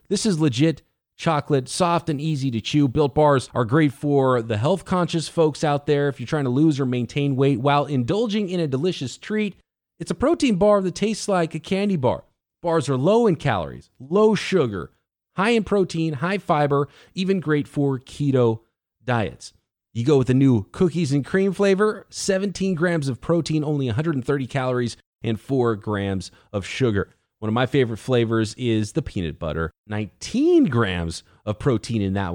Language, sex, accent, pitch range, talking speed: English, male, American, 115-170 Hz, 180 wpm